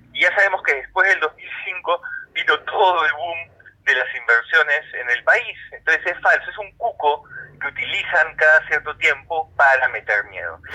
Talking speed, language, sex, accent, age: 175 wpm, Spanish, male, Argentinian, 30-49